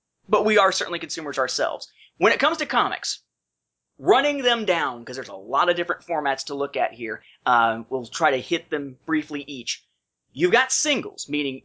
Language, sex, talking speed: English, male, 190 wpm